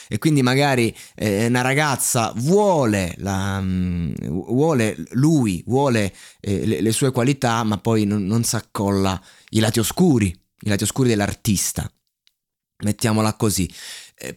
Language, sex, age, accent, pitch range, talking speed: Italian, male, 20-39, native, 115-175 Hz, 140 wpm